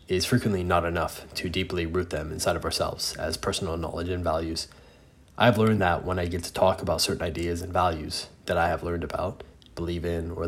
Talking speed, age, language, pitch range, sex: 210 wpm, 20-39, English, 80-100 Hz, male